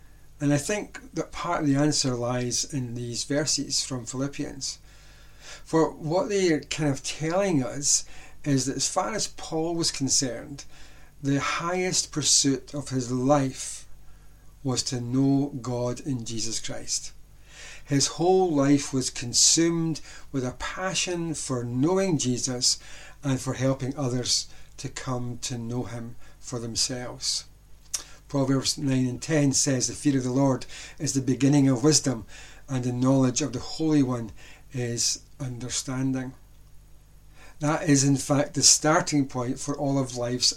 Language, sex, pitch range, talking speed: English, male, 130-150 Hz, 150 wpm